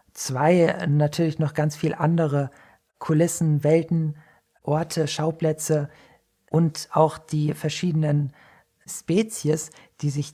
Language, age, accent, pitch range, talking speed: German, 40-59, German, 145-170 Hz, 100 wpm